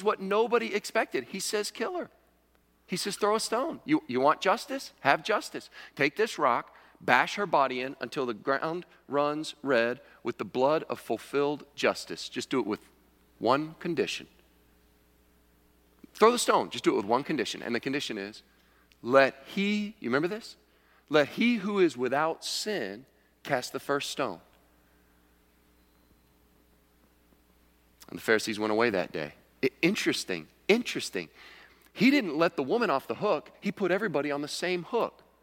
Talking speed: 160 wpm